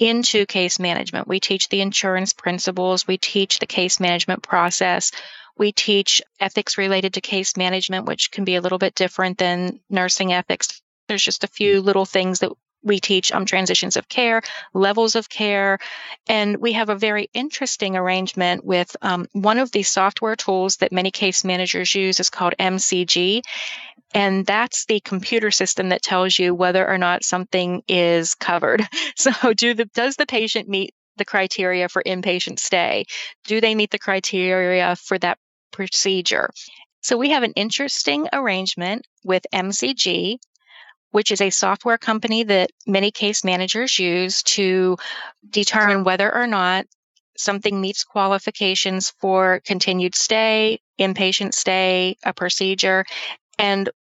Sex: female